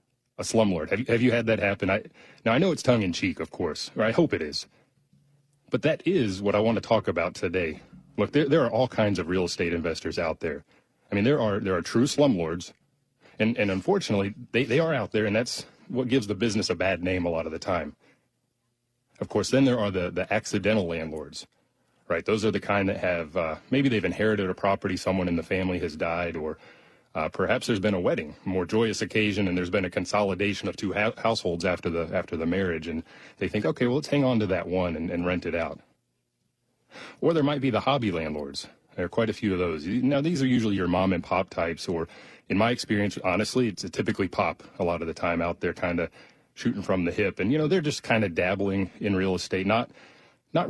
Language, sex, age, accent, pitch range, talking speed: English, male, 30-49, American, 90-115 Hz, 240 wpm